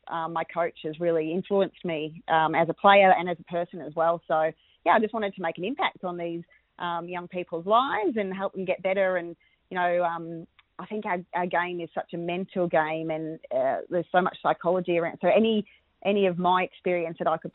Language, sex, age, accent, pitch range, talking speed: English, female, 30-49, Australian, 165-195 Hz, 230 wpm